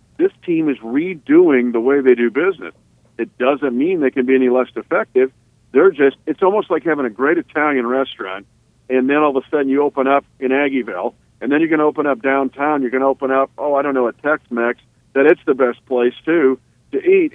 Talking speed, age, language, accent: 225 wpm, 50-69, English, American